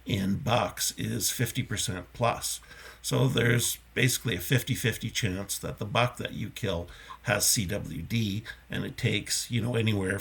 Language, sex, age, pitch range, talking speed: English, male, 50-69, 100-120 Hz, 160 wpm